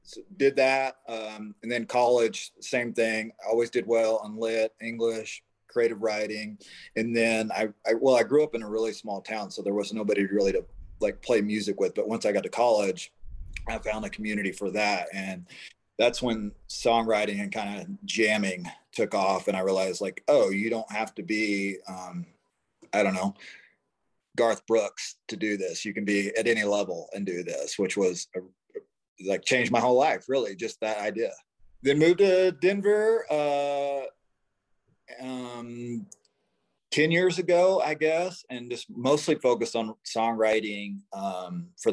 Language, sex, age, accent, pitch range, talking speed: English, male, 30-49, American, 100-135 Hz, 175 wpm